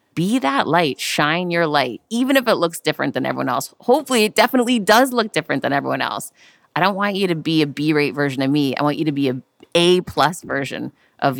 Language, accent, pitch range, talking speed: English, American, 140-175 Hz, 225 wpm